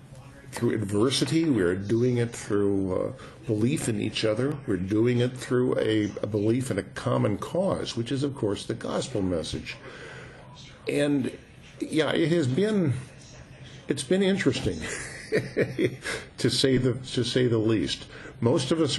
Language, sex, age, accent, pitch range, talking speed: English, male, 50-69, American, 105-135 Hz, 150 wpm